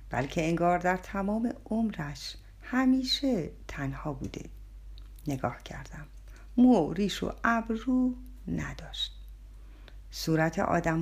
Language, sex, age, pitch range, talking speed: Persian, female, 50-69, 140-220 Hz, 95 wpm